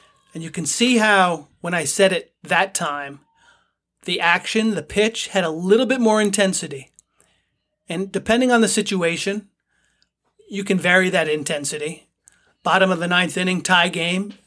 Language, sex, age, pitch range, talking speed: English, male, 30-49, 165-200 Hz, 160 wpm